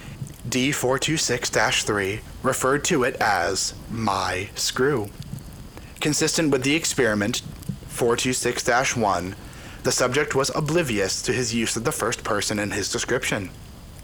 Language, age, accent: English, 30-49, American